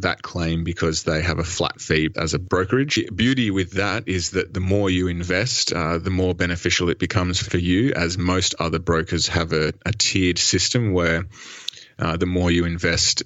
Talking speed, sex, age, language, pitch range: 200 wpm, male, 20-39, English, 80-95 Hz